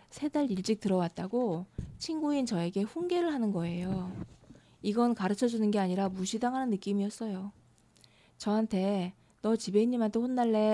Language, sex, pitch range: Korean, female, 185-225 Hz